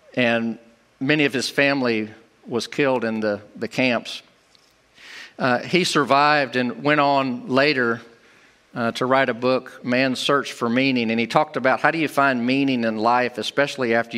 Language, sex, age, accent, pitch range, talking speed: English, male, 50-69, American, 125-175 Hz, 170 wpm